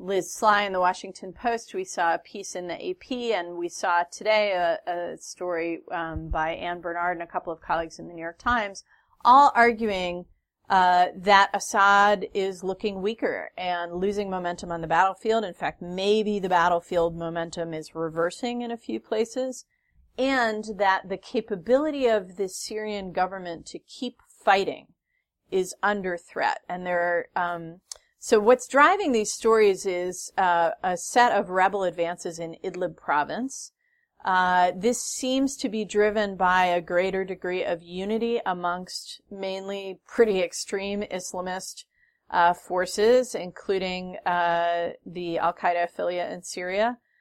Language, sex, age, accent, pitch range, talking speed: English, female, 30-49, American, 175-215 Hz, 150 wpm